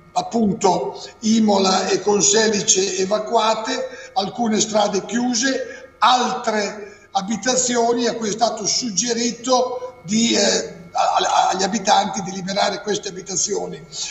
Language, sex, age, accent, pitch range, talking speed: Italian, male, 50-69, native, 210-240 Hz, 95 wpm